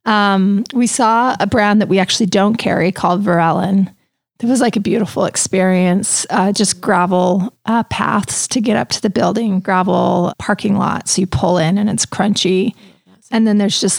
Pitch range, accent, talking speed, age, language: 180-210 Hz, American, 180 wpm, 30-49, English